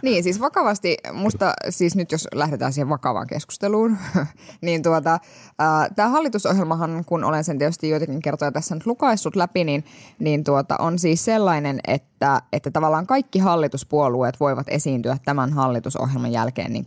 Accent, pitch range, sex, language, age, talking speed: native, 140-185 Hz, female, Finnish, 20-39, 150 wpm